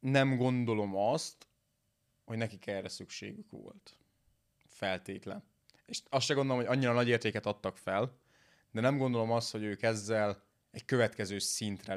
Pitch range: 100-120 Hz